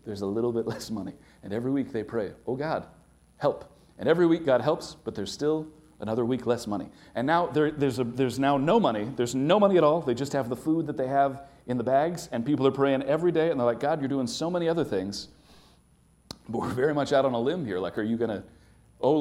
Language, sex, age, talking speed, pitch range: English, male, 40-59, 255 wpm, 115-155 Hz